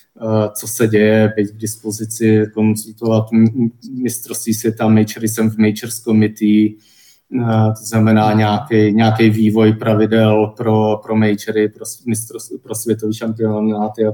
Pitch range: 110-120 Hz